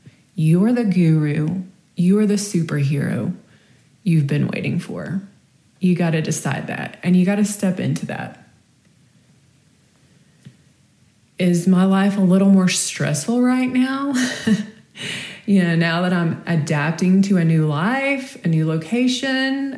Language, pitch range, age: English, 155-205 Hz, 20-39